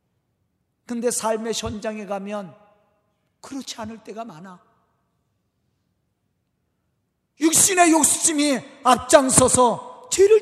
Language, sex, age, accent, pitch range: Korean, male, 40-59, native, 190-280 Hz